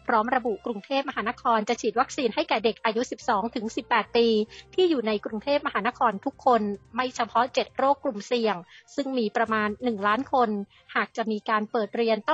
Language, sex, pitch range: Thai, female, 215-255 Hz